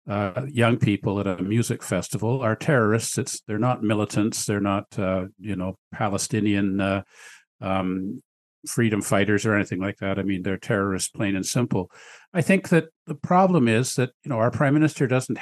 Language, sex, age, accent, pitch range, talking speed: English, male, 50-69, American, 100-125 Hz, 185 wpm